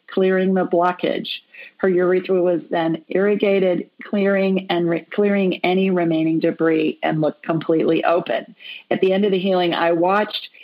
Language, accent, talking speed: English, American, 150 wpm